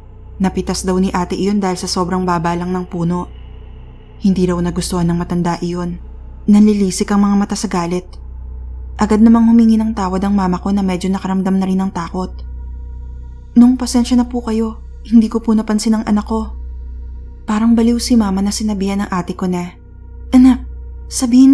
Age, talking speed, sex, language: 20-39, 175 wpm, female, Filipino